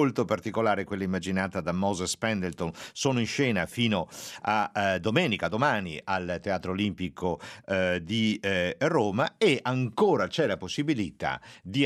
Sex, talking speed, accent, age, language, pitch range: male, 125 wpm, native, 50-69, Italian, 90-120 Hz